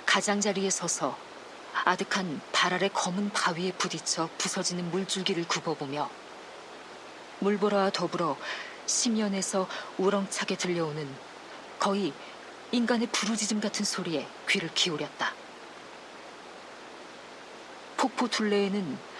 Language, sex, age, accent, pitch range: Korean, female, 40-59, native, 180-215 Hz